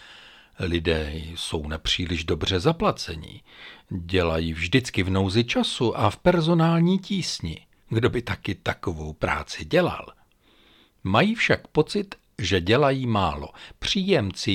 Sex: male